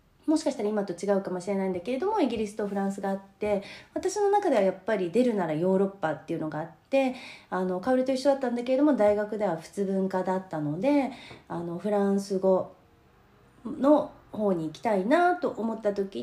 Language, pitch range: Japanese, 185-270 Hz